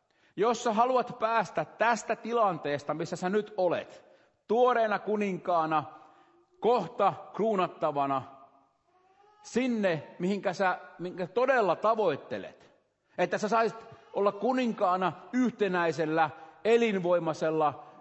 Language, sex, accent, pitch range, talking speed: Finnish, male, native, 160-215 Hz, 85 wpm